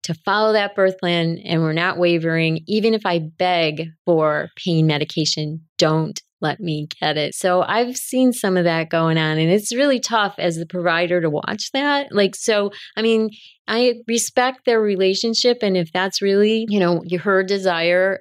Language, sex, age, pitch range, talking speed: English, female, 30-49, 165-205 Hz, 180 wpm